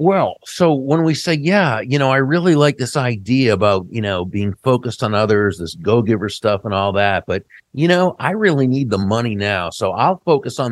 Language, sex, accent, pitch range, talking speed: English, male, American, 105-135 Hz, 220 wpm